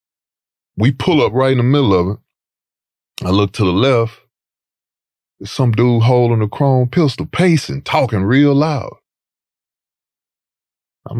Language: English